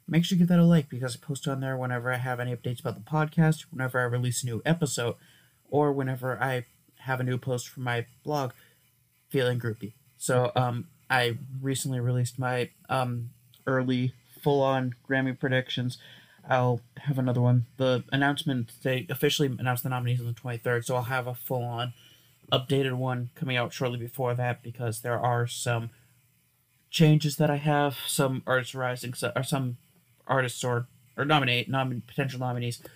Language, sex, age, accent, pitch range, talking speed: English, male, 30-49, American, 120-135 Hz, 170 wpm